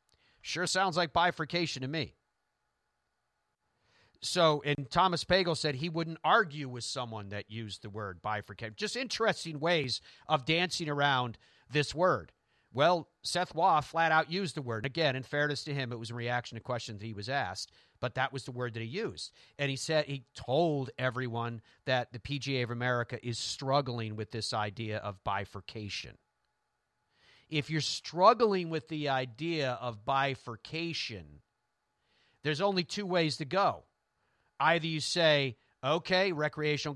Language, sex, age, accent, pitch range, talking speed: English, male, 40-59, American, 125-170 Hz, 155 wpm